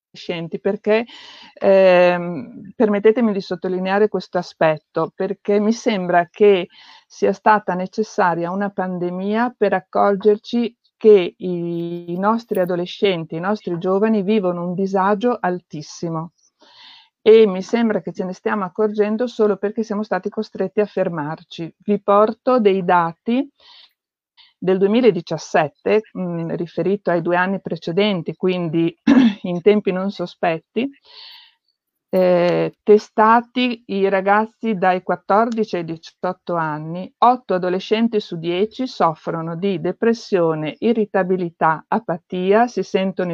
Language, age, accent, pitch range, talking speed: Italian, 50-69, native, 180-220 Hz, 110 wpm